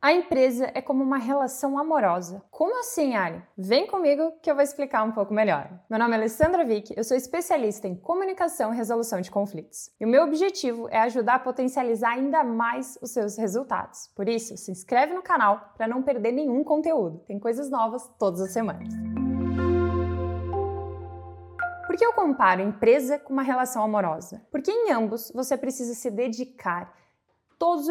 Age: 20-39